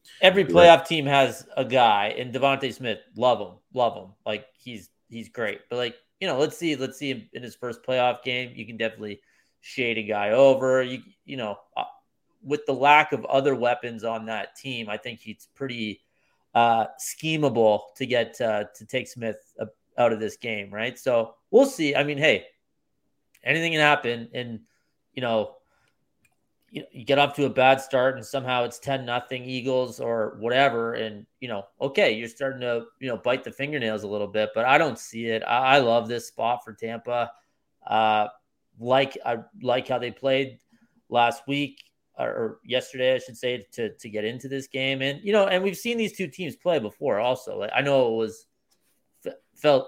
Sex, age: male, 30-49